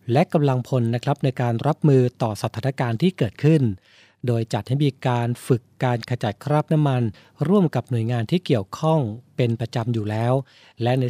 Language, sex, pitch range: Thai, male, 120-145 Hz